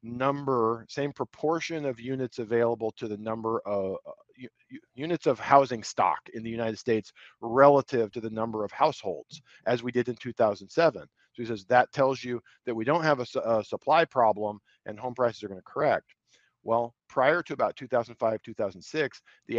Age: 40-59